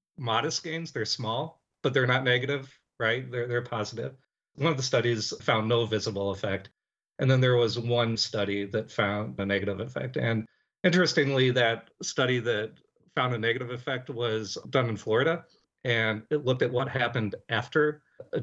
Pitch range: 110-135 Hz